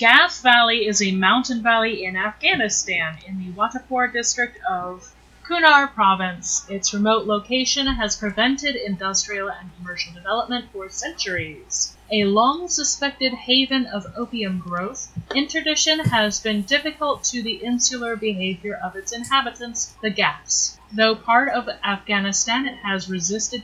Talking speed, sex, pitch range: 135 wpm, female, 195-250 Hz